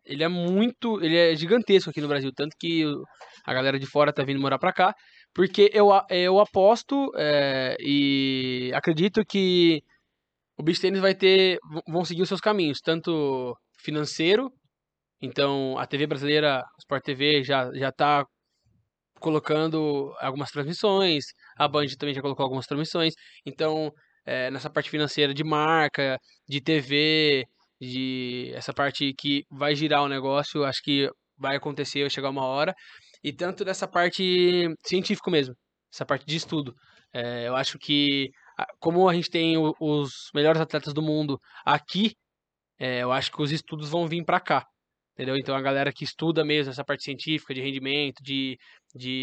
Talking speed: 160 wpm